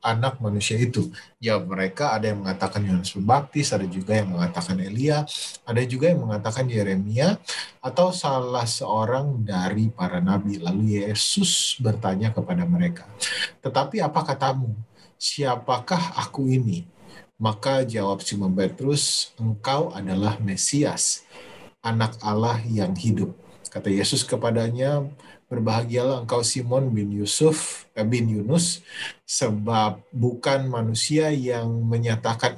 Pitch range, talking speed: 105-135 Hz, 120 wpm